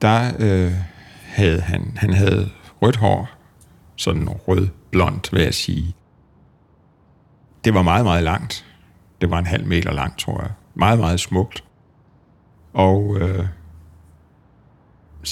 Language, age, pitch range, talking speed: Danish, 60-79, 95-115 Hz, 120 wpm